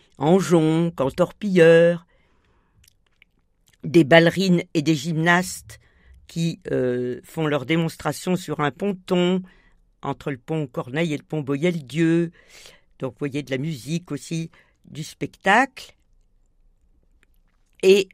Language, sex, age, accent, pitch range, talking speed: French, female, 50-69, French, 140-185 Hz, 115 wpm